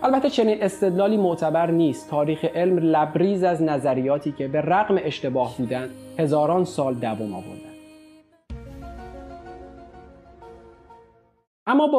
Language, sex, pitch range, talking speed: Persian, male, 130-185 Hz, 105 wpm